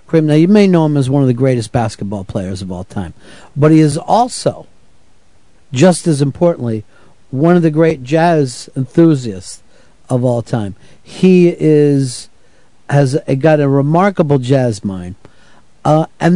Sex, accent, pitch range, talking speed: male, American, 120-160 Hz, 155 wpm